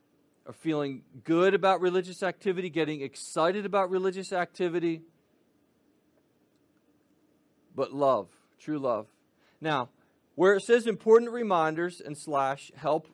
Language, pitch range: English, 140-175 Hz